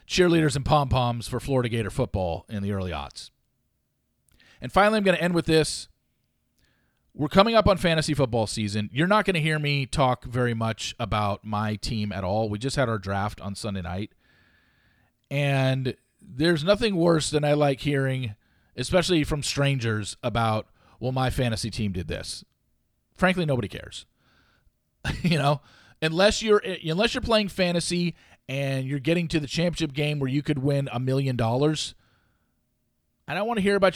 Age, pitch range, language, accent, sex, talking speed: 40-59, 115-175 Hz, English, American, male, 170 wpm